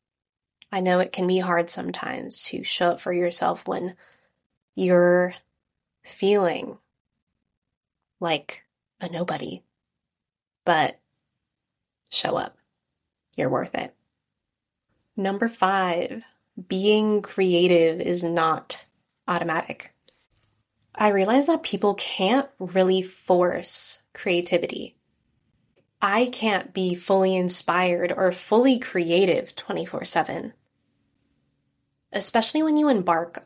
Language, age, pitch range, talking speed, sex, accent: English, 20-39, 170-195 Hz, 95 wpm, female, American